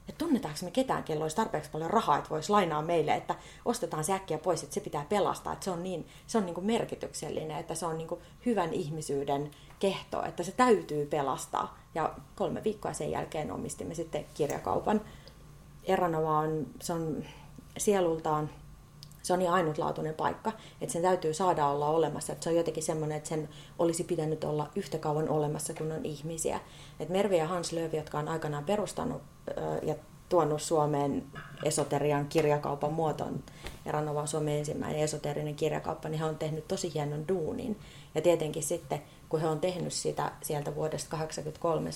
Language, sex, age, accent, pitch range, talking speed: Finnish, female, 30-49, native, 150-175 Hz, 170 wpm